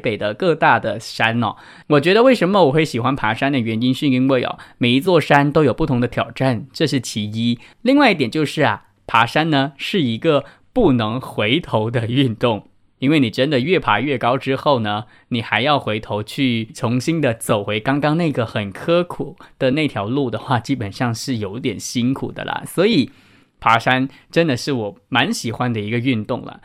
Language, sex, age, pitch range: English, male, 20-39, 115-140 Hz